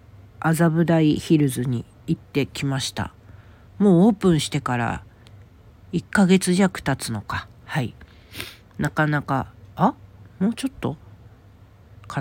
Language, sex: Japanese, female